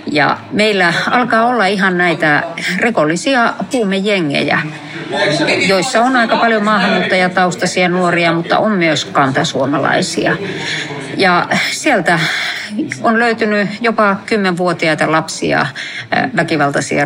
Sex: female